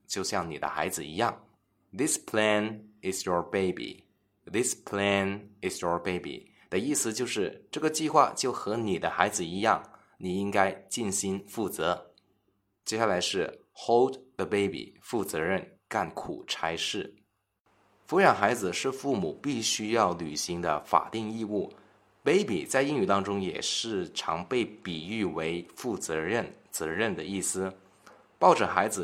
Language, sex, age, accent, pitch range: Chinese, male, 20-39, native, 90-105 Hz